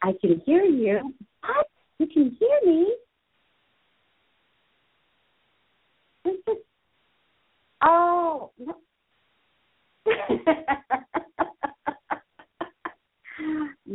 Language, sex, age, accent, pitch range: English, female, 50-69, American, 210-330 Hz